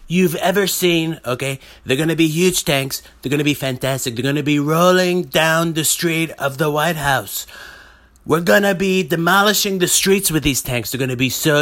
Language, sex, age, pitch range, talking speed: English, male, 30-49, 130-175 Hz, 190 wpm